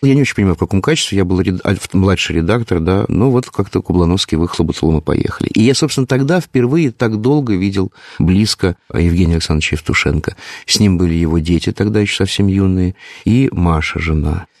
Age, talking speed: 50-69, 175 wpm